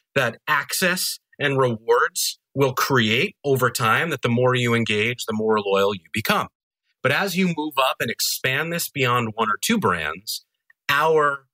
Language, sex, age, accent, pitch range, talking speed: English, male, 40-59, American, 110-140 Hz, 165 wpm